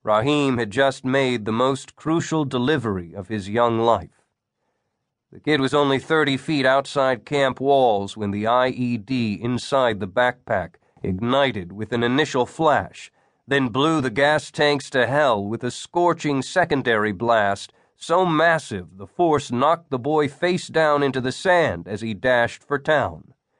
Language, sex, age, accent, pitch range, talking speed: English, male, 50-69, American, 110-145 Hz, 155 wpm